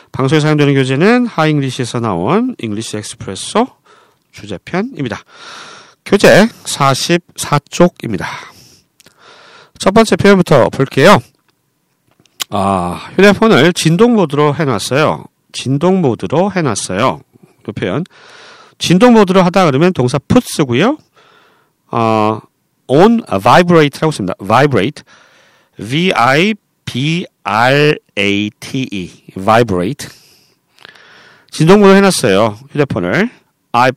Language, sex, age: Korean, male, 40-59